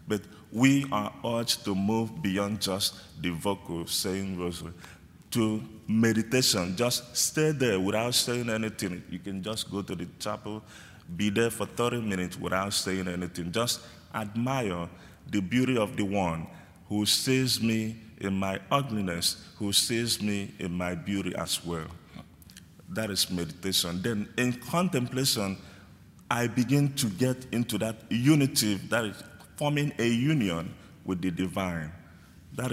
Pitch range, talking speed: 90-115 Hz, 145 wpm